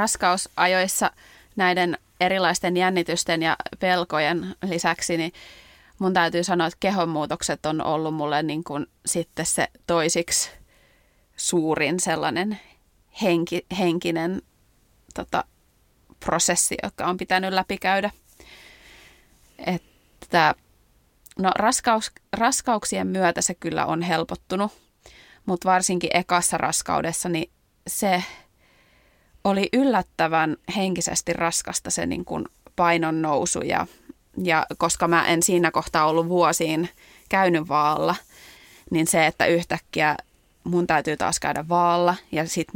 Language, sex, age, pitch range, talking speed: Finnish, female, 30-49, 165-190 Hz, 105 wpm